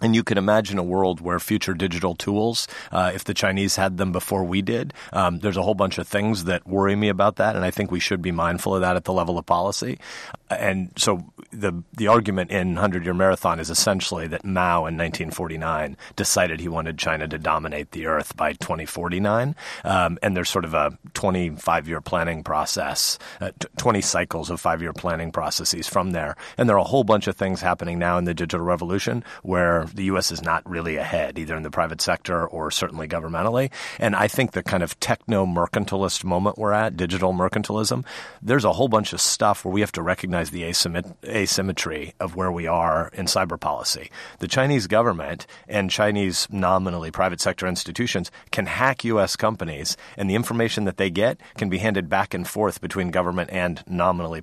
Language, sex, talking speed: English, male, 195 wpm